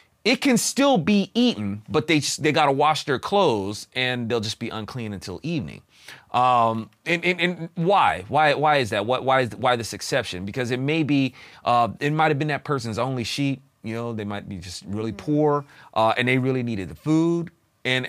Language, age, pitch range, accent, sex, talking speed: English, 30-49, 110-155 Hz, American, male, 210 wpm